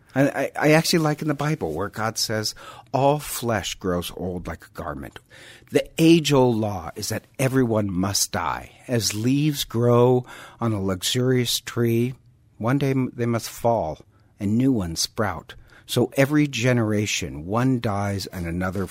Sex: male